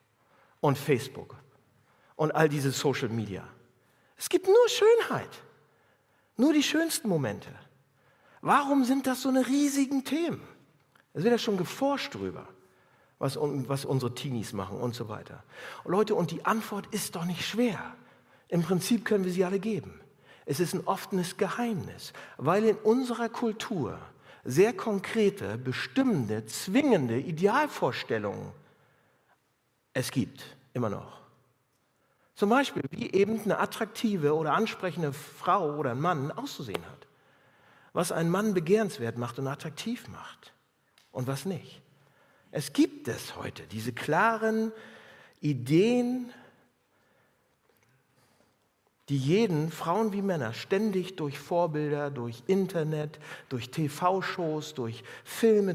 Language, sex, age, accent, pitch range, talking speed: German, male, 60-79, German, 140-220 Hz, 125 wpm